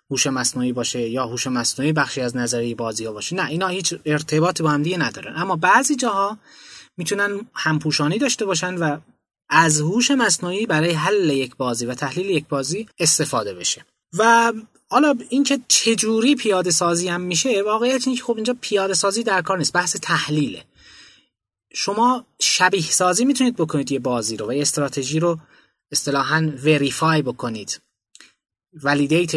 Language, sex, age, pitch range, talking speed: Persian, male, 20-39, 135-185 Hz, 155 wpm